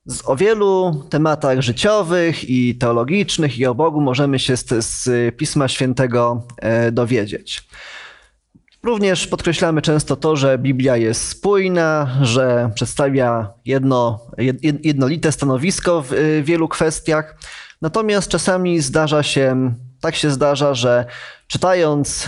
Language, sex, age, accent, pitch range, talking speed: Polish, male, 20-39, native, 125-155 Hz, 115 wpm